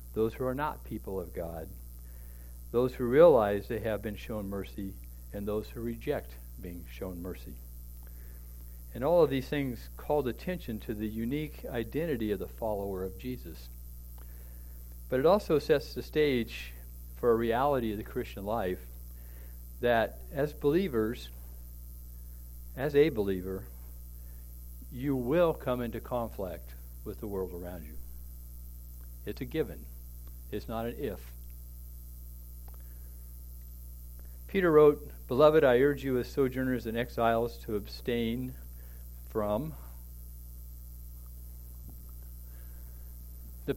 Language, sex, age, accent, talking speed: English, male, 60-79, American, 120 wpm